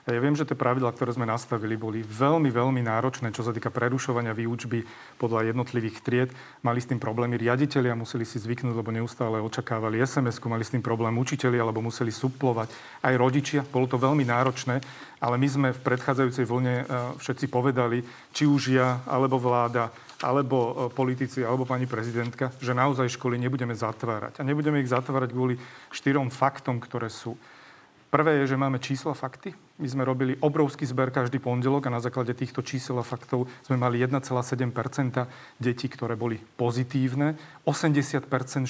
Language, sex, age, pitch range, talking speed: Slovak, male, 40-59, 120-135 Hz, 165 wpm